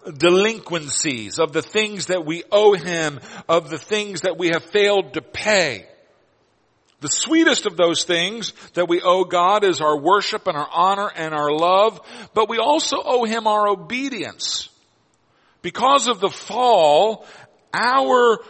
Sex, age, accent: male, 50-69, American